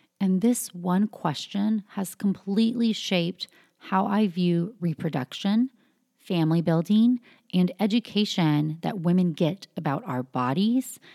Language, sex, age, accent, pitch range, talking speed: English, female, 30-49, American, 165-210 Hz, 115 wpm